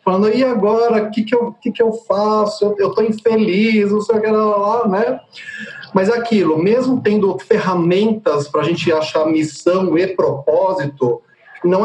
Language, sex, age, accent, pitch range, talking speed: Portuguese, male, 40-59, Brazilian, 160-215 Hz, 160 wpm